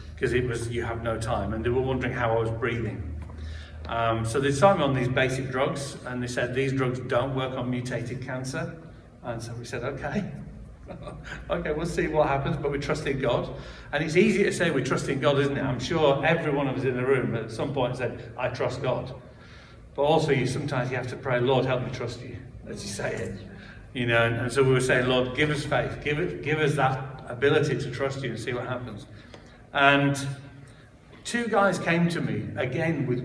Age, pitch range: 50-69, 120-140 Hz